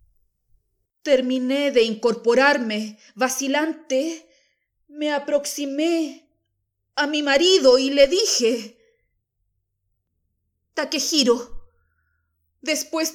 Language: Spanish